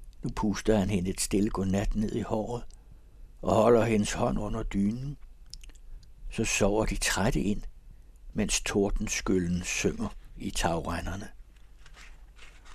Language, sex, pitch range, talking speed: Danish, male, 85-120 Hz, 125 wpm